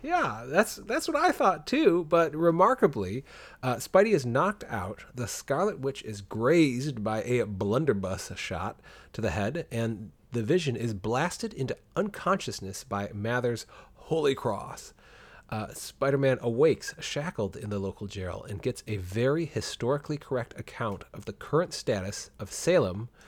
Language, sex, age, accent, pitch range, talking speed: English, male, 30-49, American, 100-145 Hz, 150 wpm